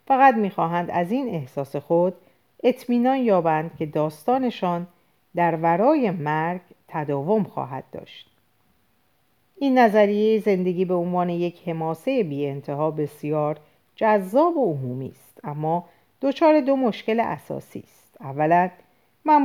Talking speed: 120 wpm